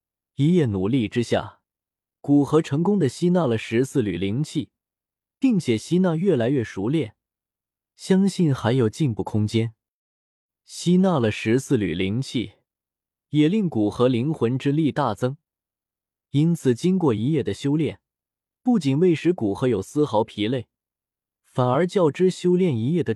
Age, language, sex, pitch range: 20-39, Chinese, male, 110-155 Hz